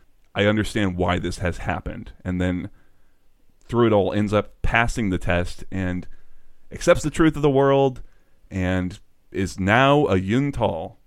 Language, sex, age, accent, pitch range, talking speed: English, male, 30-49, American, 95-120 Hz, 150 wpm